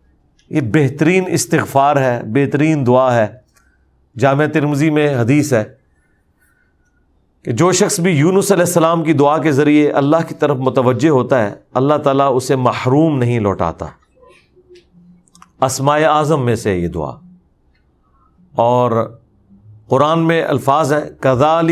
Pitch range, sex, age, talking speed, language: 110-150 Hz, male, 40-59, 130 wpm, Urdu